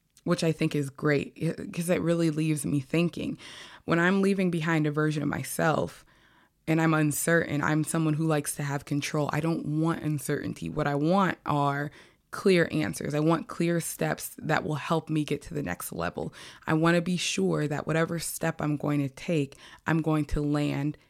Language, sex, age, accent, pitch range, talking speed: English, female, 20-39, American, 150-170 Hz, 195 wpm